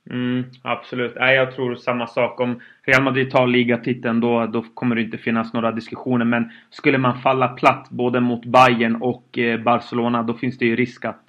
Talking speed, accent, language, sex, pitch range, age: 195 wpm, native, Swedish, male, 115-130 Hz, 30-49